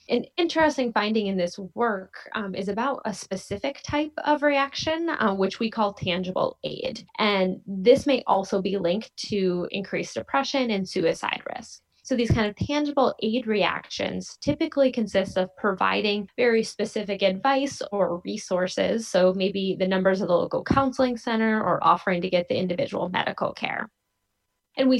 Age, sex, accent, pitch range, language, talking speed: 10-29, female, American, 185-245 Hz, English, 160 wpm